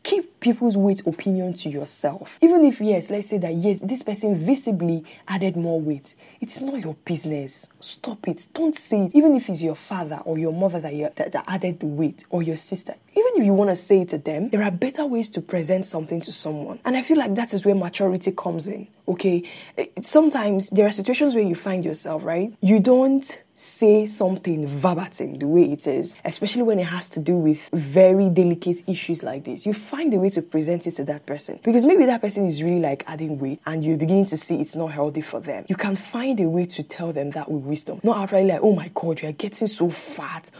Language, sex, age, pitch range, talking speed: English, female, 10-29, 165-215 Hz, 230 wpm